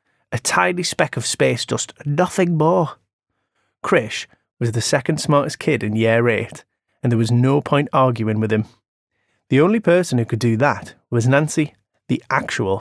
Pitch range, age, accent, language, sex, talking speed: 115-155 Hz, 30-49, British, English, male, 170 wpm